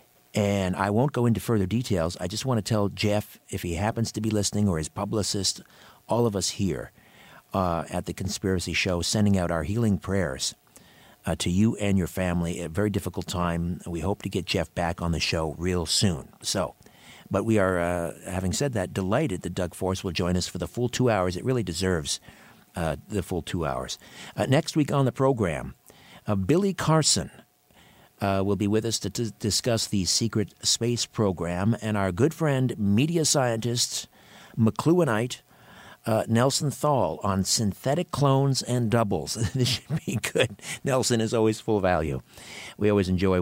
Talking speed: 185 wpm